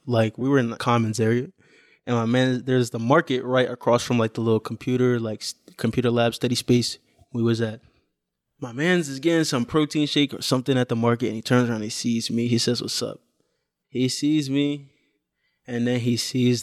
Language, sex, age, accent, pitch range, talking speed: English, male, 20-39, American, 120-150 Hz, 215 wpm